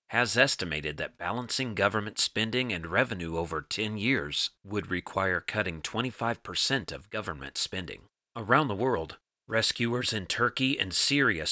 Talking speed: 135 wpm